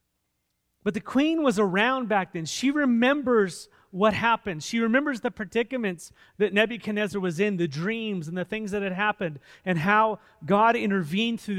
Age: 30-49